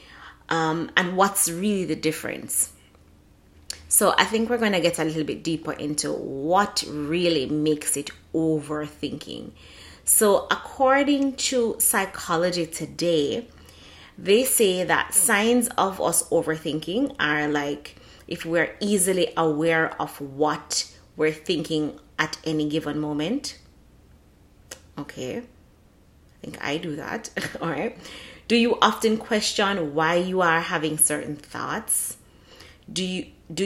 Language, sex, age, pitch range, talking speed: English, female, 30-49, 150-195 Hz, 120 wpm